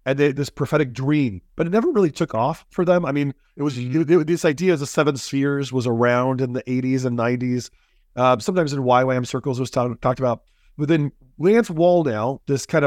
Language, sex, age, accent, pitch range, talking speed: English, male, 30-49, American, 125-160 Hz, 225 wpm